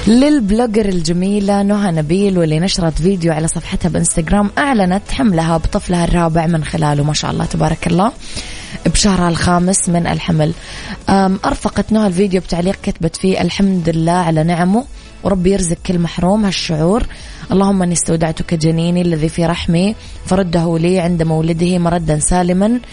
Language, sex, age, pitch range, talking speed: Arabic, female, 20-39, 165-195 Hz, 140 wpm